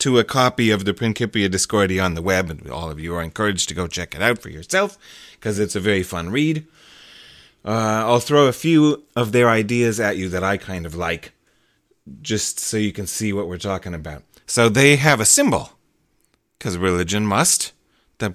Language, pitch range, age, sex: English, 95-120 Hz, 30-49, male